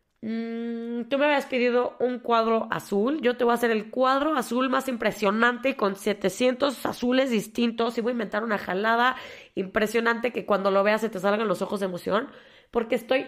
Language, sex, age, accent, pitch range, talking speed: Spanish, female, 20-39, Mexican, 200-250 Hz, 190 wpm